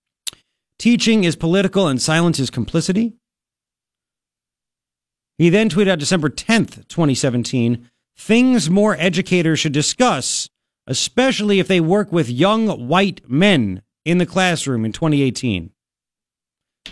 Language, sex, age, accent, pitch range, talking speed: English, male, 40-59, American, 130-185 Hz, 115 wpm